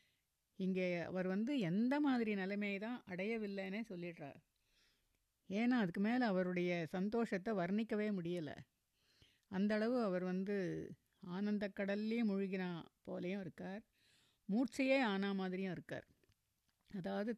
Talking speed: 95 wpm